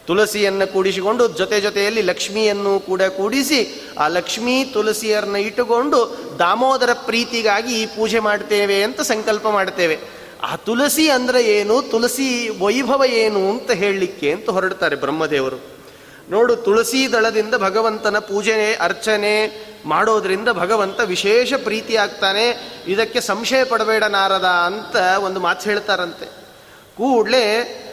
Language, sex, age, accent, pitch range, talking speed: Kannada, male, 30-49, native, 205-240 Hz, 105 wpm